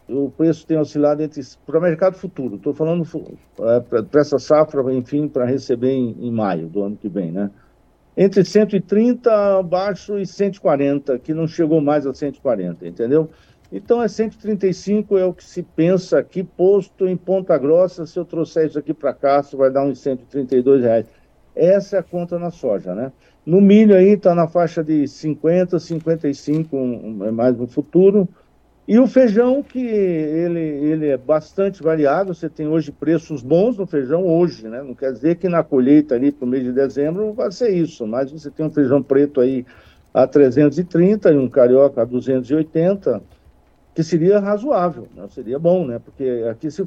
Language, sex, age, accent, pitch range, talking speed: Portuguese, male, 50-69, Brazilian, 135-180 Hz, 185 wpm